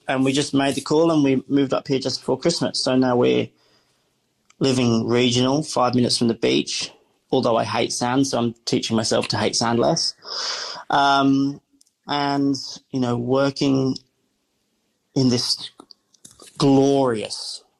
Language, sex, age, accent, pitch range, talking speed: English, male, 30-49, British, 120-135 Hz, 150 wpm